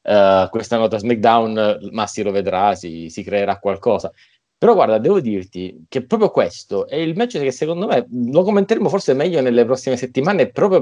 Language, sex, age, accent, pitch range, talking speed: Italian, male, 20-39, native, 105-145 Hz, 185 wpm